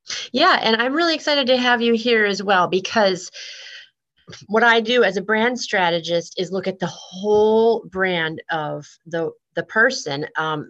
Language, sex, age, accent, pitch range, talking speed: English, female, 30-49, American, 170-220 Hz, 170 wpm